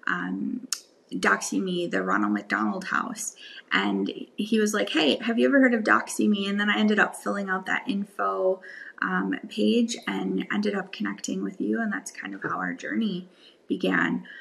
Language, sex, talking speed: English, female, 175 wpm